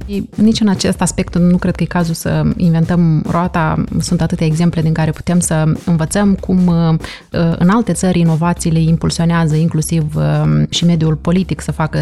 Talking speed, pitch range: 160 wpm, 160-195 Hz